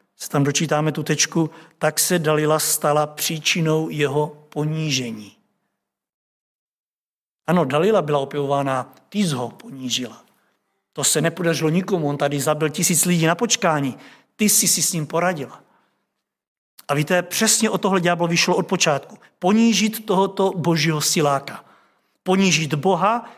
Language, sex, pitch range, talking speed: Czech, male, 145-180 Hz, 130 wpm